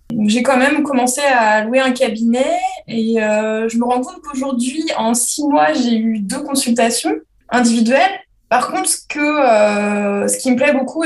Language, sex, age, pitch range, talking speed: French, female, 20-39, 220-270 Hz, 170 wpm